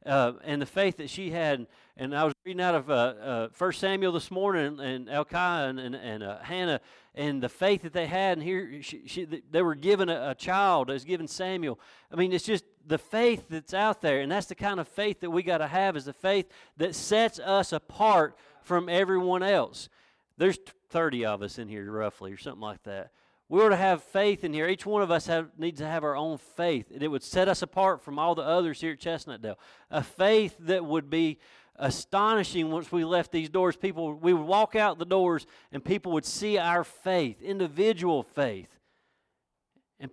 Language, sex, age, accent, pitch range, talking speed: English, male, 40-59, American, 150-185 Hz, 220 wpm